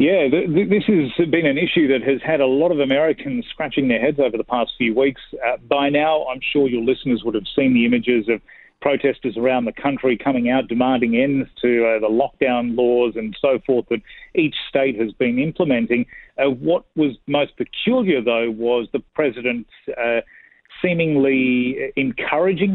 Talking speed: 180 wpm